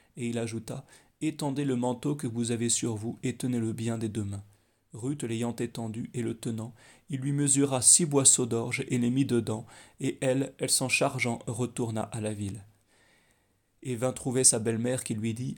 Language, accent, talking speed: French, French, 205 wpm